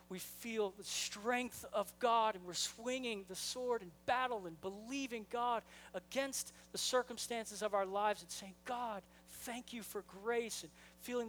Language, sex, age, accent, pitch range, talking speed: English, male, 40-59, American, 150-220 Hz, 165 wpm